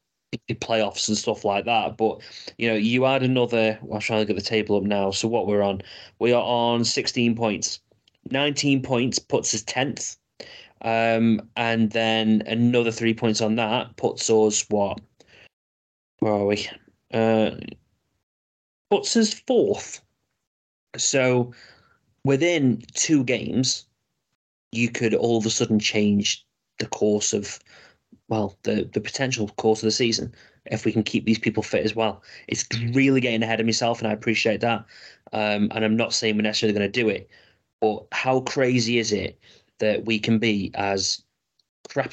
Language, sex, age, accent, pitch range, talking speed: English, male, 20-39, British, 105-120 Hz, 165 wpm